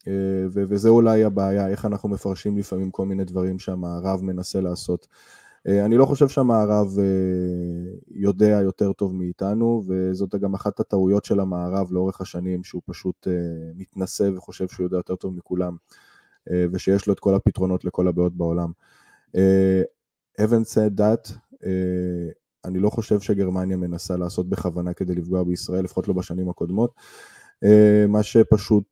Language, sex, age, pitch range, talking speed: Hebrew, male, 20-39, 90-105 Hz, 135 wpm